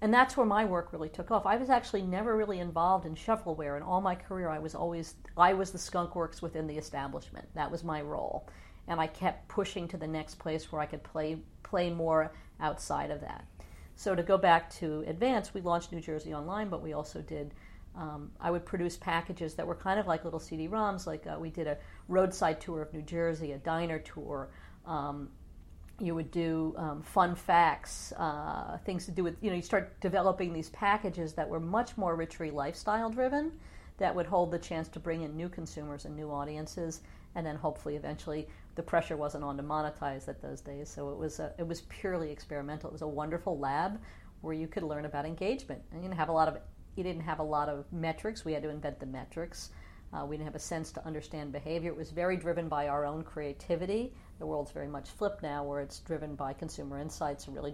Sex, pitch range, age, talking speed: female, 150-180 Hz, 50-69, 220 wpm